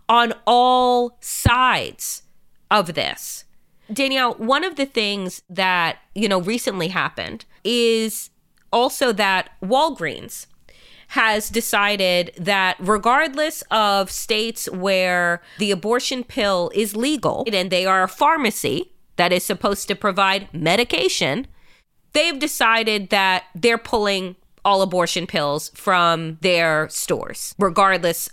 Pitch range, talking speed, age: 185-240 Hz, 115 wpm, 30-49